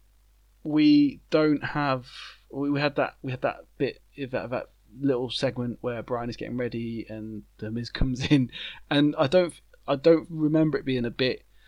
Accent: British